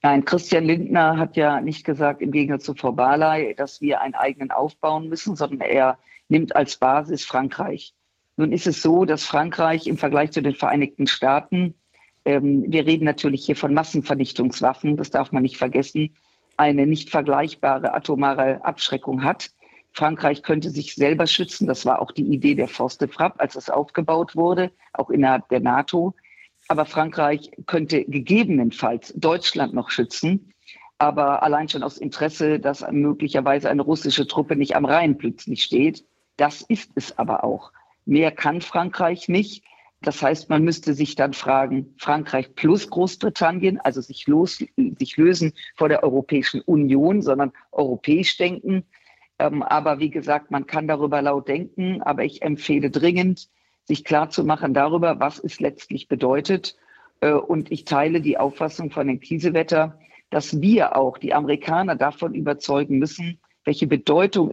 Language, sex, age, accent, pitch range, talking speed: German, female, 50-69, German, 140-170 Hz, 155 wpm